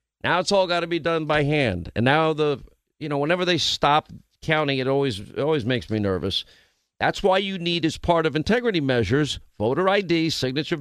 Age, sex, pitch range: 50-69, male, 125-165 Hz